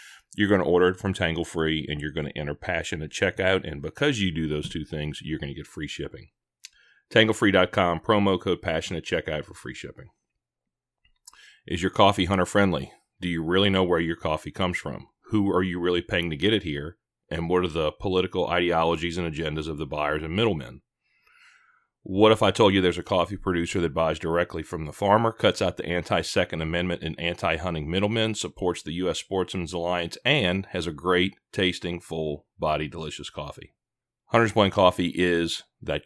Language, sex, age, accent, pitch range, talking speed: English, male, 40-59, American, 80-95 Hz, 190 wpm